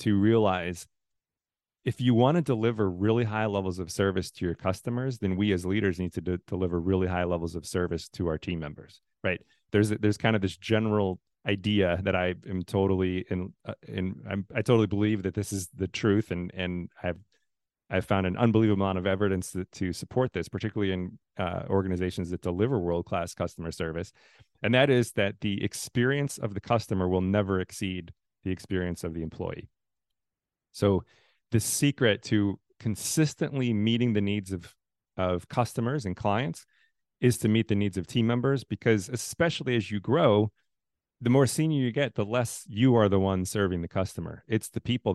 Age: 30-49